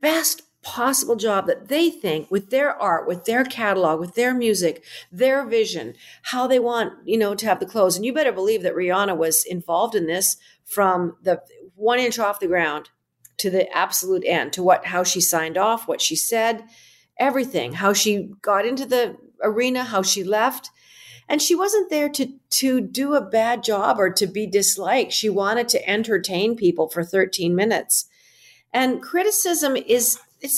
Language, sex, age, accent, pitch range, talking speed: English, female, 50-69, American, 185-250 Hz, 180 wpm